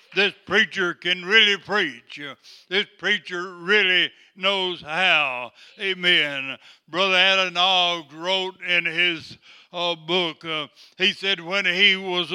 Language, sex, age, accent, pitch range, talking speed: English, male, 60-79, American, 165-185 Hz, 120 wpm